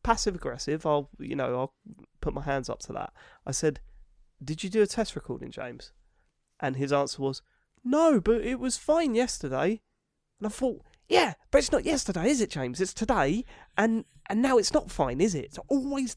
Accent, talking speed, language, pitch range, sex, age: British, 195 wpm, English, 140-210 Hz, male, 30-49